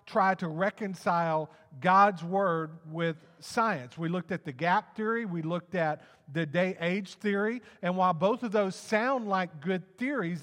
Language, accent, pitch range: English, American, 165-210 Hz